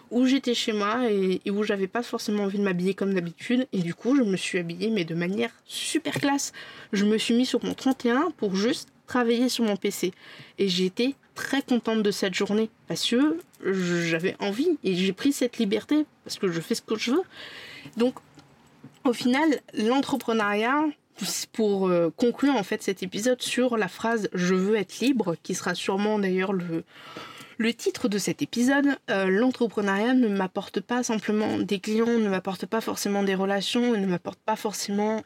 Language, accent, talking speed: French, French, 185 wpm